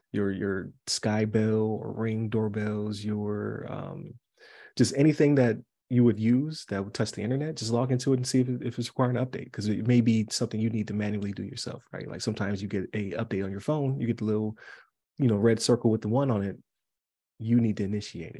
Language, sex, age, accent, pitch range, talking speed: English, male, 30-49, American, 100-125 Hz, 230 wpm